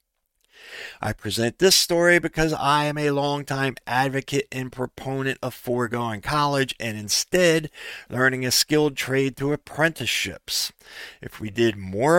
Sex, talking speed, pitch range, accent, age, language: male, 135 wpm, 115-145 Hz, American, 50-69, English